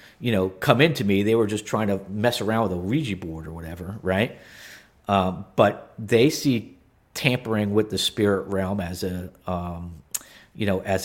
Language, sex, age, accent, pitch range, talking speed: English, male, 50-69, American, 95-120 Hz, 185 wpm